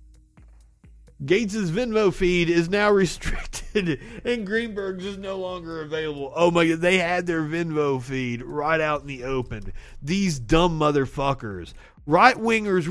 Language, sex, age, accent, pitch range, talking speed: English, male, 30-49, American, 135-210 Hz, 135 wpm